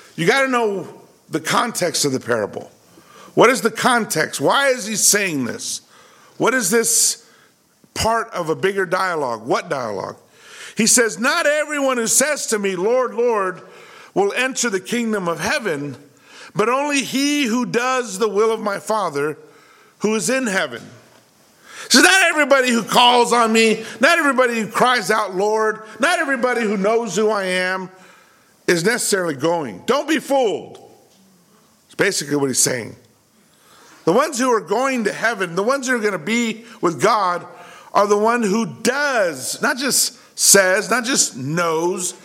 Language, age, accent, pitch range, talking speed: English, 50-69, American, 185-245 Hz, 165 wpm